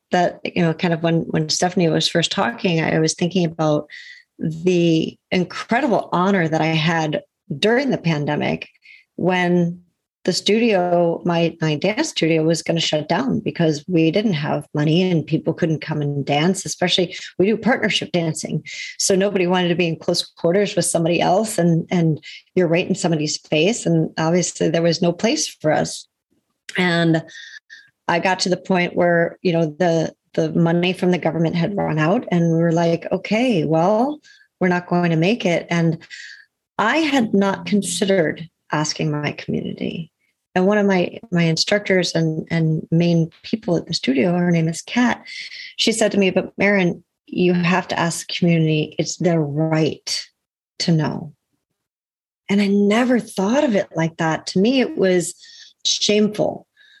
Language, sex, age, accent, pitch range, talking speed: English, female, 40-59, American, 165-200 Hz, 170 wpm